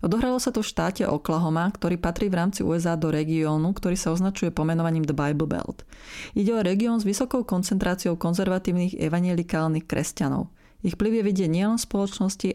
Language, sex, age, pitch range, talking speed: Slovak, female, 30-49, 160-200 Hz, 170 wpm